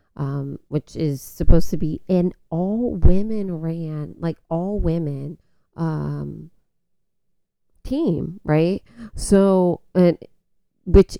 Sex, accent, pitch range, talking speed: female, American, 145-170 Hz, 85 wpm